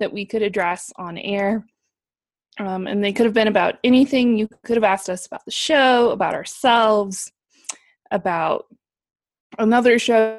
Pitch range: 200-235 Hz